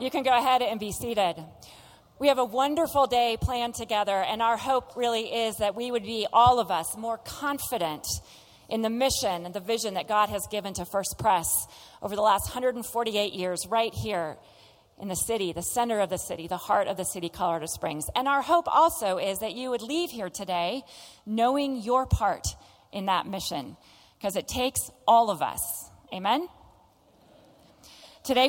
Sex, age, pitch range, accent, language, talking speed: female, 40-59, 190-245 Hz, American, English, 185 wpm